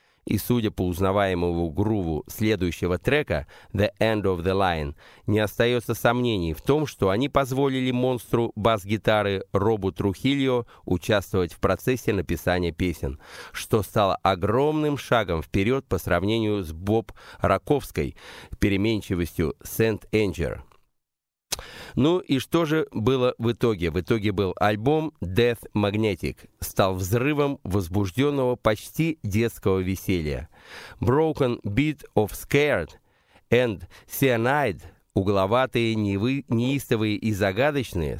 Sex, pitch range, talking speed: male, 95-125 Hz, 115 wpm